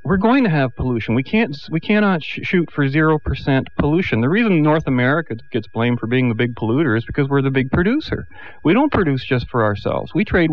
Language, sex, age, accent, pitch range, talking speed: English, male, 40-59, American, 110-140 Hz, 220 wpm